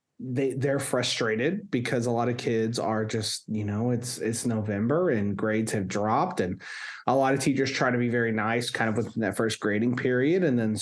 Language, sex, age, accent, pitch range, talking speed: English, male, 30-49, American, 110-145 Hz, 210 wpm